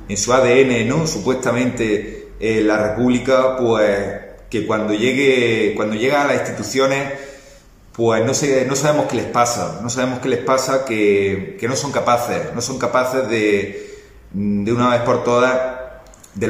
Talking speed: 165 wpm